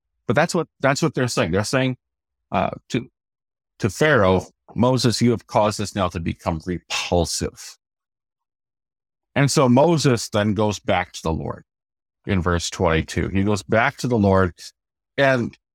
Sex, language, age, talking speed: male, English, 50-69, 155 wpm